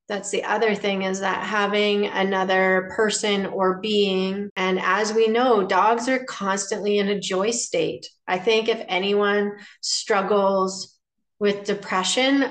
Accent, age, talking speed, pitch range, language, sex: American, 30-49, 140 wpm, 185-215 Hz, English, female